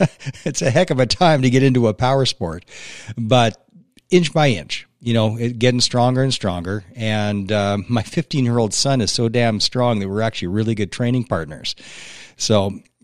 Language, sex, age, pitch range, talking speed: English, male, 40-59, 100-120 Hz, 195 wpm